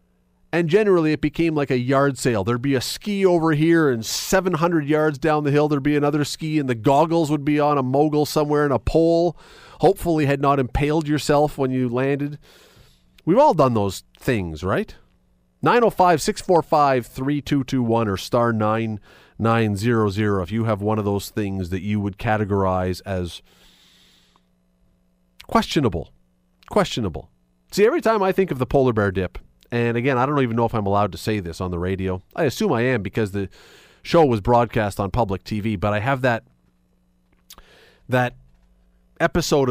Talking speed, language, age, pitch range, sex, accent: 170 wpm, English, 40-59, 90-145 Hz, male, American